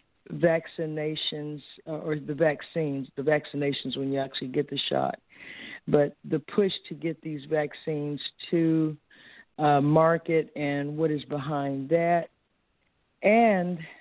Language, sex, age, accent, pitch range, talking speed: English, female, 50-69, American, 145-160 Hz, 125 wpm